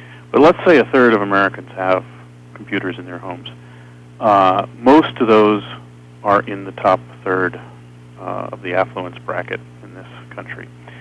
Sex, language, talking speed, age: male, English, 160 wpm, 40-59